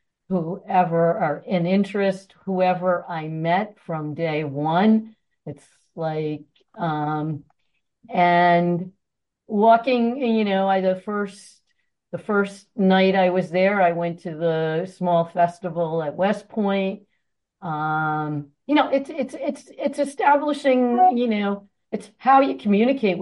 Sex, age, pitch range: female, 50-69, 175-220 Hz